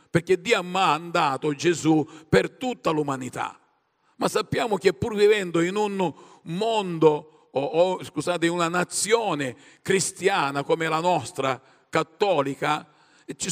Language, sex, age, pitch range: Italian, male, 50-69, 155-200 Hz